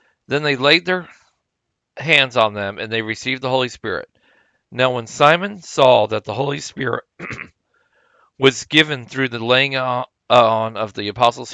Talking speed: 155 wpm